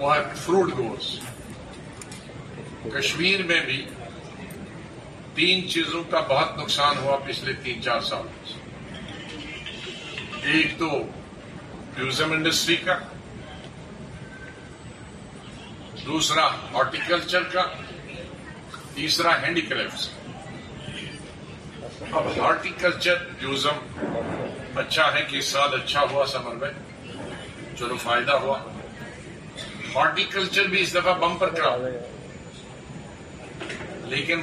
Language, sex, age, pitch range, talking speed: Urdu, male, 50-69, 140-175 Hz, 80 wpm